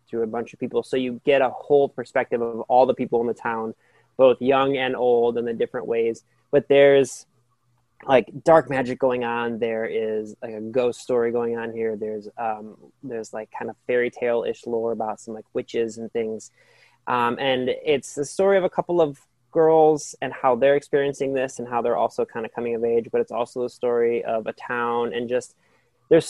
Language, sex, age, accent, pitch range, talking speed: English, male, 20-39, American, 115-130 Hz, 210 wpm